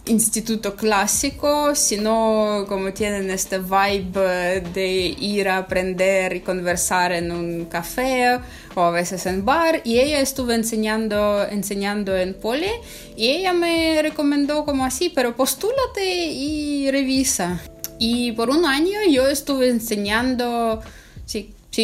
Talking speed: 125 wpm